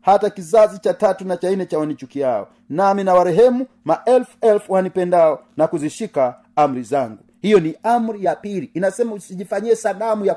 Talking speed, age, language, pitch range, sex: 170 wpm, 40-59, Swahili, 160-220 Hz, male